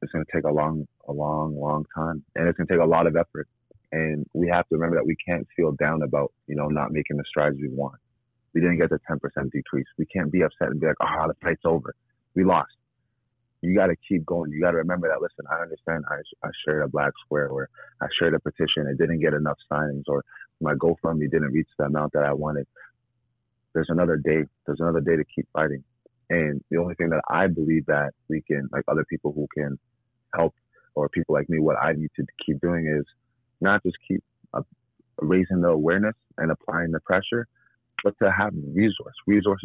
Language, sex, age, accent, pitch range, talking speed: English, male, 30-49, American, 75-95 Hz, 230 wpm